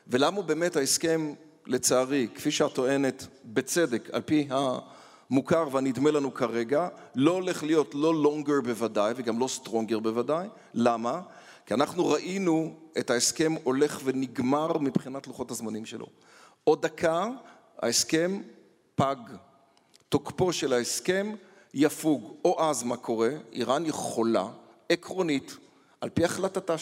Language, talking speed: Hebrew, 120 wpm